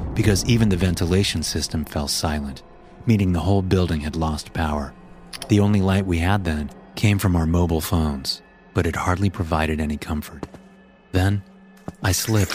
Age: 30-49